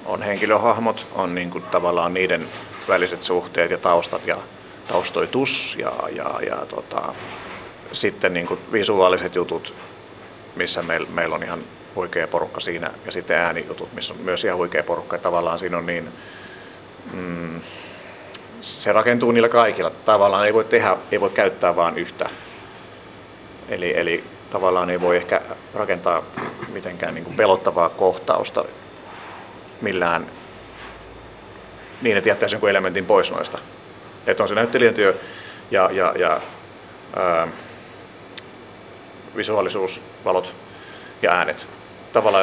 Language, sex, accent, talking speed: Finnish, male, native, 125 wpm